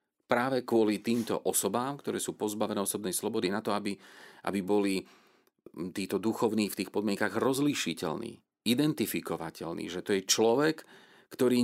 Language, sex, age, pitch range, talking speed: Slovak, male, 40-59, 100-115 Hz, 135 wpm